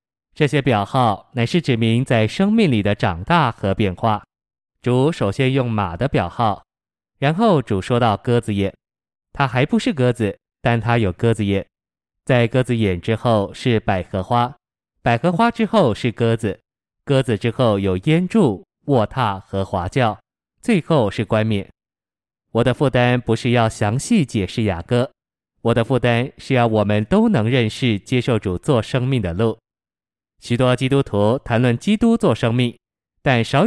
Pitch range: 105-130 Hz